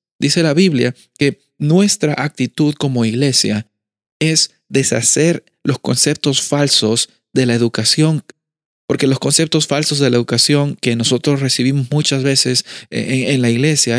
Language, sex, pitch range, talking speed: Spanish, male, 115-145 Hz, 135 wpm